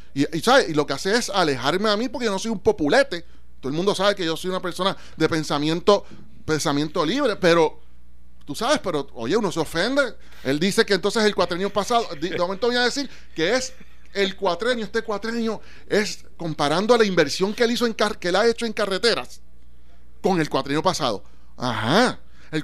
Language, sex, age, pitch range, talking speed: Spanish, male, 30-49, 155-210 Hz, 210 wpm